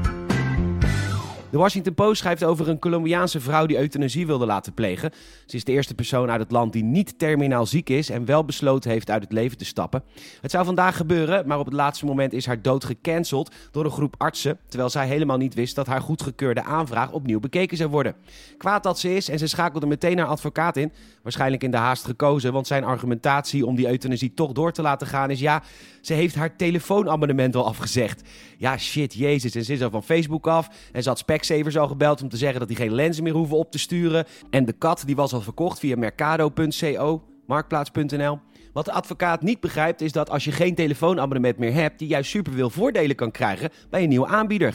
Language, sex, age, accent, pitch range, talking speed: Dutch, male, 30-49, Dutch, 125-160 Hz, 215 wpm